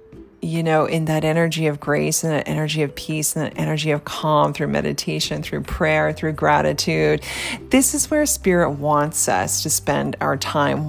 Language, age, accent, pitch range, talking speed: English, 30-49, American, 145-175 Hz, 180 wpm